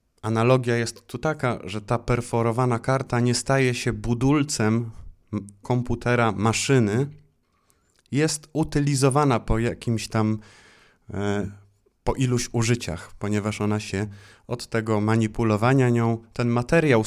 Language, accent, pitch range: Polish, native, 100-125 Hz